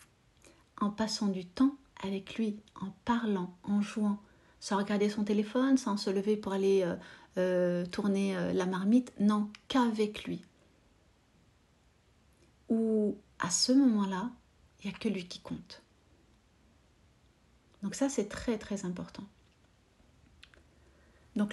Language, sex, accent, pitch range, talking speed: French, female, French, 185-220 Hz, 130 wpm